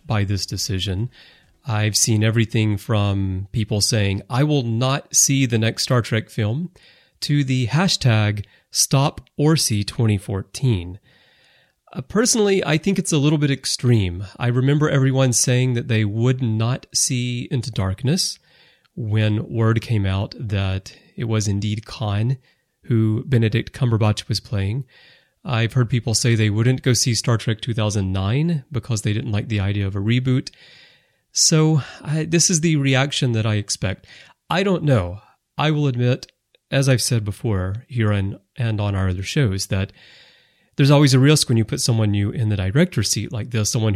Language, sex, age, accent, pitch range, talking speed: English, male, 30-49, American, 105-140 Hz, 165 wpm